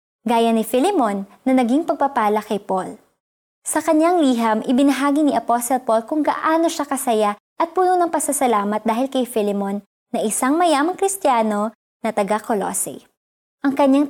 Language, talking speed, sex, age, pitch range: Filipino, 145 wpm, male, 20-39, 225-290 Hz